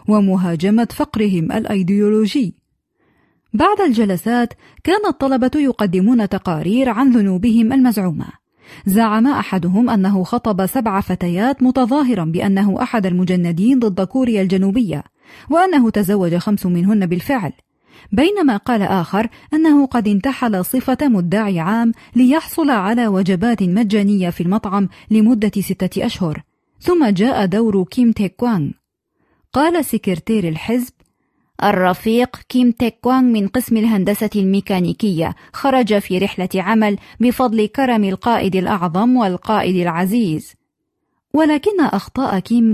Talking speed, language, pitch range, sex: 110 wpm, Arabic, 195-255 Hz, female